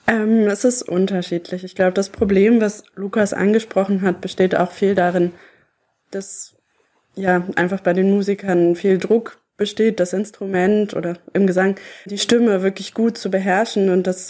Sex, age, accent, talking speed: female, 20-39, German, 160 wpm